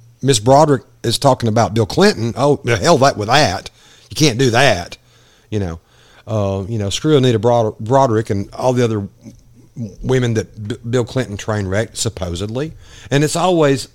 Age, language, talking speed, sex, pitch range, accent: 50-69, English, 170 wpm, male, 105-130 Hz, American